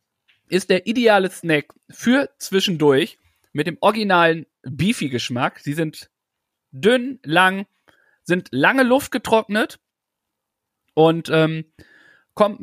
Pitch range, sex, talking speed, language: 145-195 Hz, male, 100 wpm, German